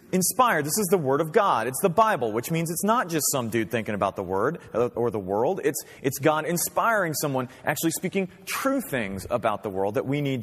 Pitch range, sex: 130-185 Hz, male